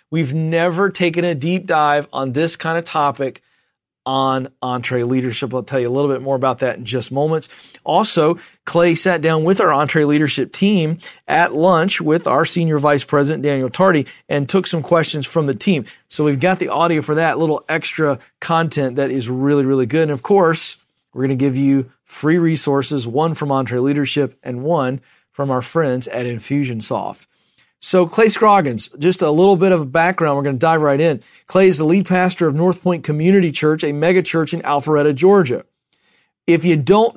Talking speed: 195 wpm